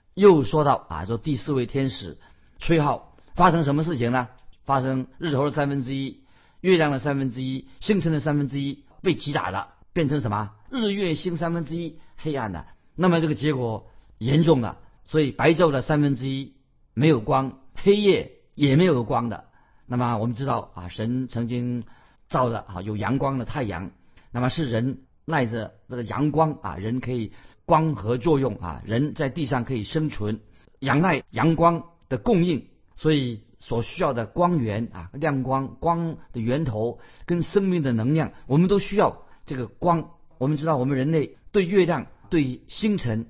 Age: 50-69